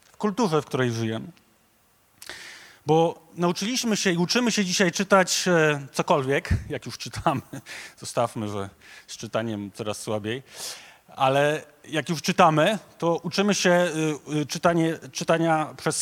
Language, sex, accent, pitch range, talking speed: Polish, male, native, 120-175 Hz, 120 wpm